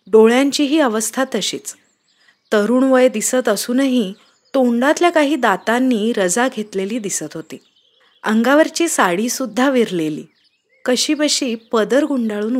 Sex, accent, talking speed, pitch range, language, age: female, native, 105 wpm, 210-275 Hz, Marathi, 30-49